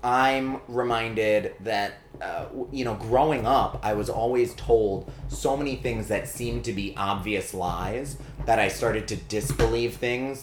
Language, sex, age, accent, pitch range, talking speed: English, male, 30-49, American, 110-135 Hz, 155 wpm